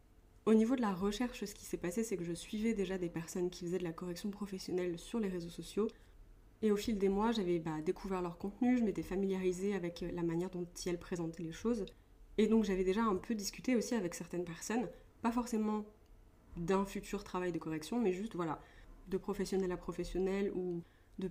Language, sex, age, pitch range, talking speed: French, female, 20-39, 175-210 Hz, 210 wpm